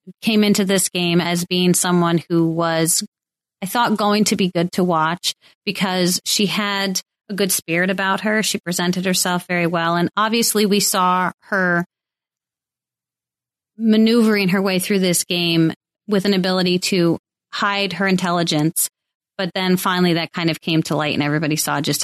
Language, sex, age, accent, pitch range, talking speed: English, female, 30-49, American, 165-195 Hz, 165 wpm